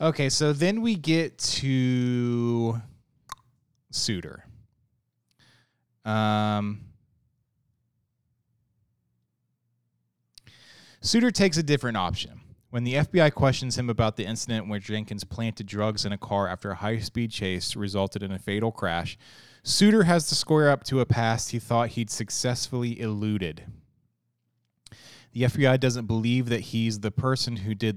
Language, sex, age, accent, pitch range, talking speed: English, male, 20-39, American, 100-125 Hz, 130 wpm